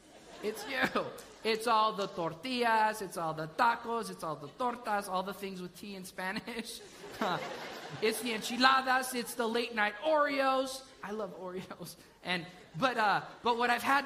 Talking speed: 170 wpm